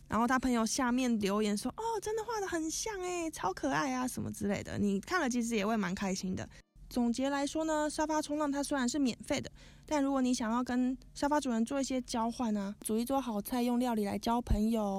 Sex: female